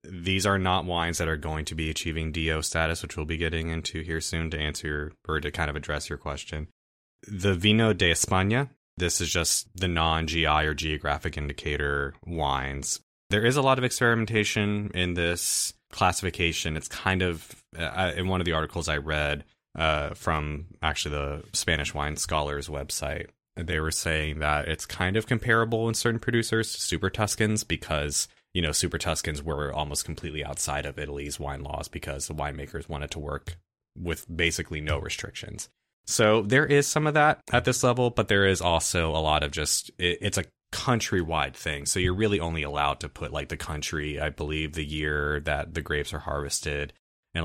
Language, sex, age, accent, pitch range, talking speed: English, male, 20-39, American, 75-95 Hz, 185 wpm